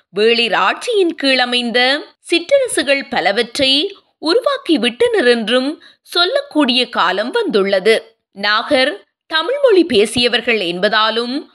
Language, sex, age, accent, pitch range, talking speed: Tamil, female, 20-39, native, 235-330 Hz, 50 wpm